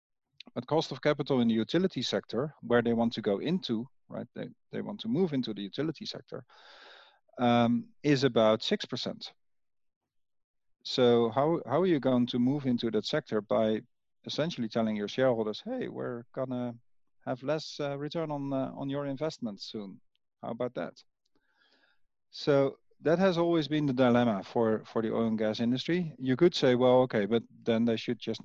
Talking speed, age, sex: 180 wpm, 40-59, male